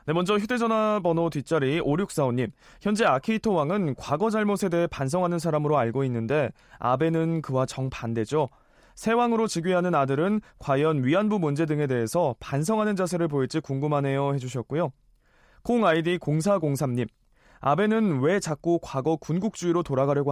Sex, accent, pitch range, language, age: male, native, 135-185 Hz, Korean, 20-39